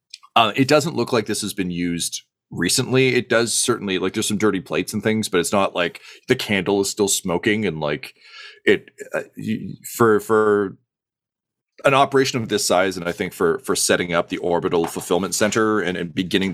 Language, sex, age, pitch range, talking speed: English, male, 30-49, 85-120 Hz, 195 wpm